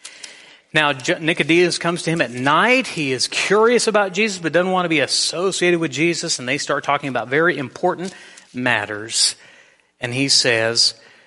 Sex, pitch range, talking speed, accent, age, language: male, 135-185 Hz, 165 wpm, American, 40-59, English